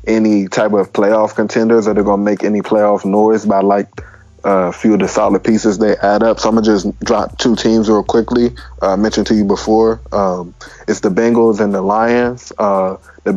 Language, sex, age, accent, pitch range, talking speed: English, male, 20-39, American, 105-115 Hz, 220 wpm